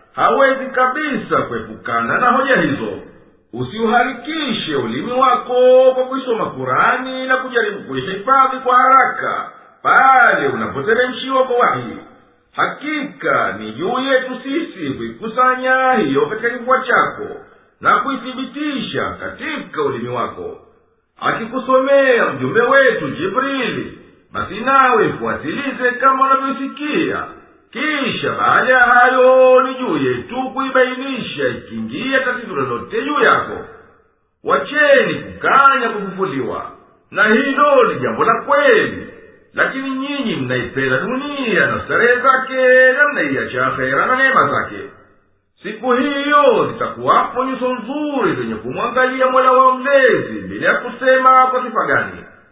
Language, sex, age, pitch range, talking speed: Swahili, male, 50-69, 250-275 Hz, 105 wpm